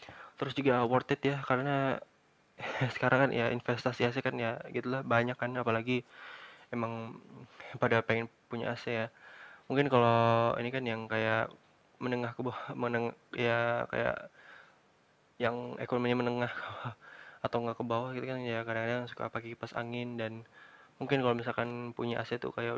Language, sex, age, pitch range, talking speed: Indonesian, male, 20-39, 115-125 Hz, 160 wpm